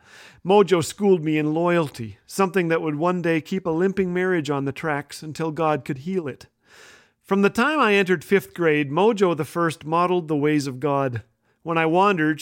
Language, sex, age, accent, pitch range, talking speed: English, male, 40-59, American, 150-210 Hz, 190 wpm